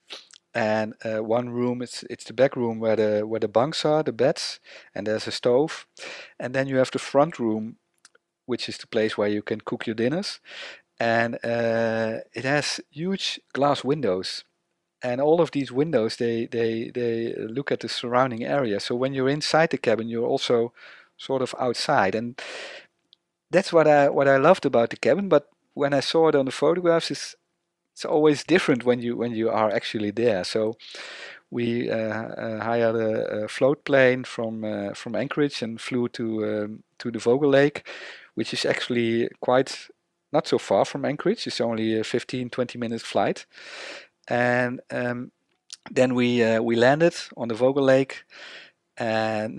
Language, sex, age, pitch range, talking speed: English, male, 50-69, 115-135 Hz, 175 wpm